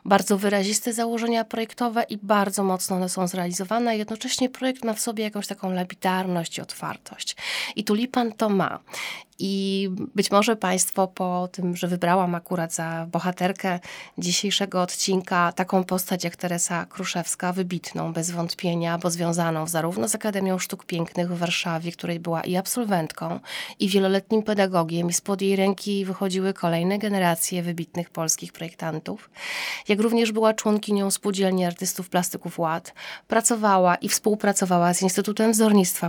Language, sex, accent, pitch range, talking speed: Polish, female, native, 175-215 Hz, 140 wpm